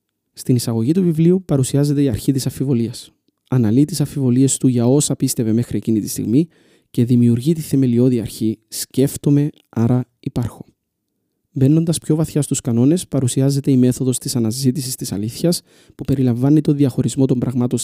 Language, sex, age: Greek, male, 30-49